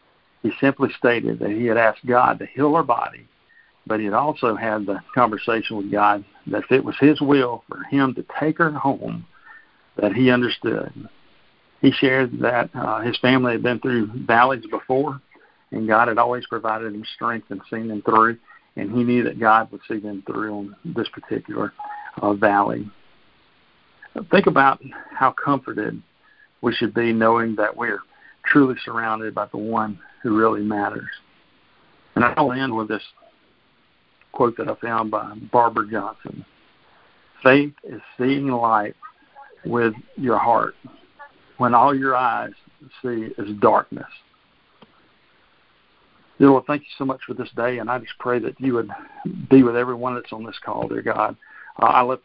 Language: English